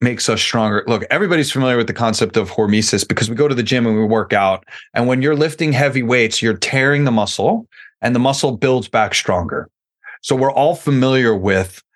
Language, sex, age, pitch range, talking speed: English, male, 30-49, 105-130 Hz, 210 wpm